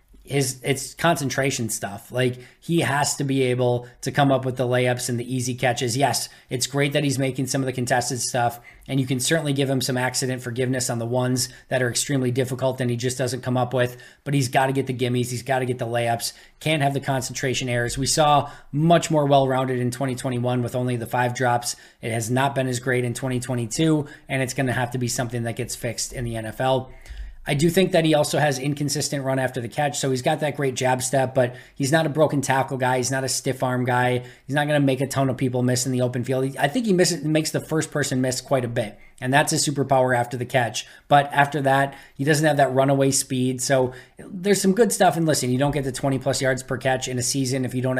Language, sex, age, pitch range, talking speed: English, male, 20-39, 125-140 Hz, 255 wpm